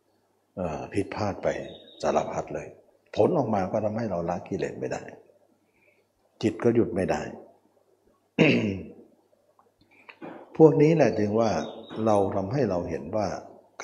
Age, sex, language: 60-79, male, Thai